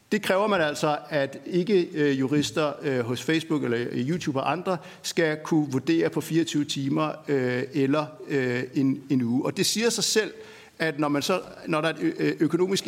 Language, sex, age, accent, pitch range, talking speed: Danish, male, 60-79, native, 135-160 Hz, 160 wpm